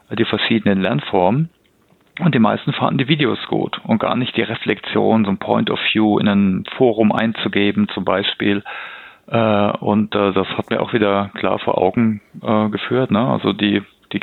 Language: English